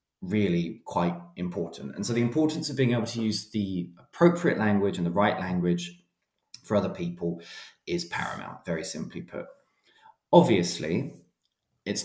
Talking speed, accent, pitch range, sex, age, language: 145 wpm, British, 90-120 Hz, male, 20-39, English